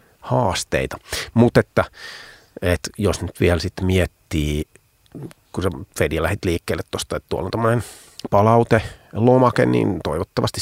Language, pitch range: Finnish, 85-105 Hz